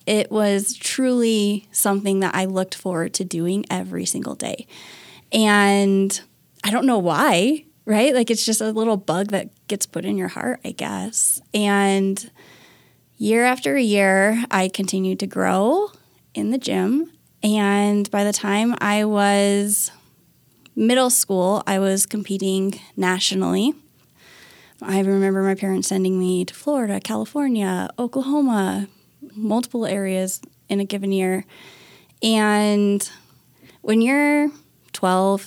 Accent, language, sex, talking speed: American, English, female, 130 wpm